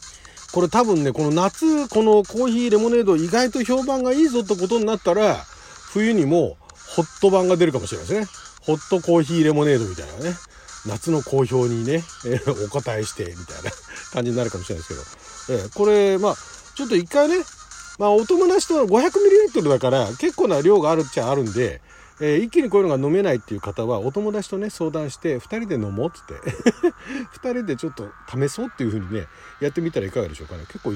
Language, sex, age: Japanese, male, 40-59